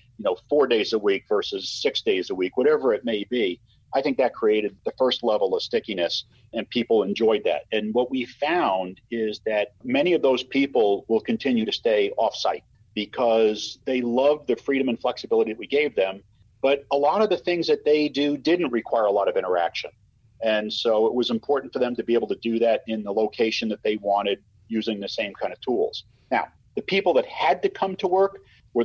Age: 40-59